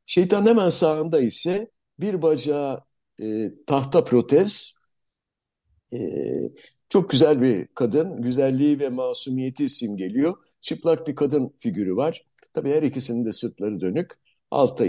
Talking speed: 120 wpm